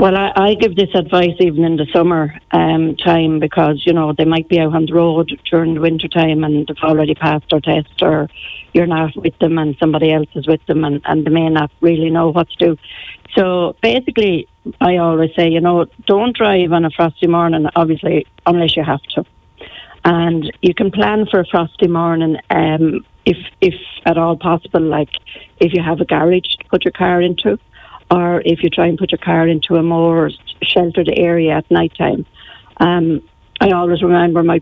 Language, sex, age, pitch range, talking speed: English, female, 60-79, 160-180 Hz, 205 wpm